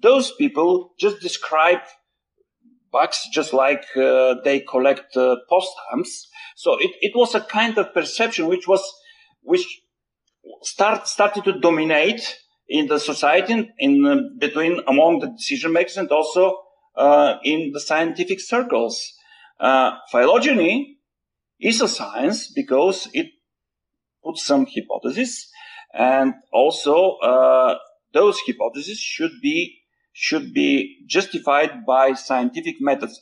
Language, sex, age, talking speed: English, male, 40-59, 120 wpm